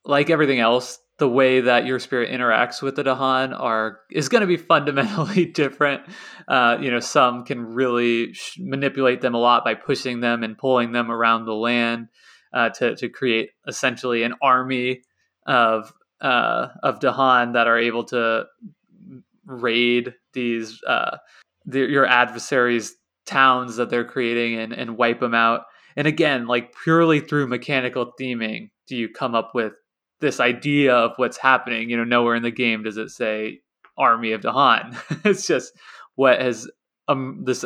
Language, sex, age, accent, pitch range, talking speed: English, male, 20-39, American, 120-140 Hz, 165 wpm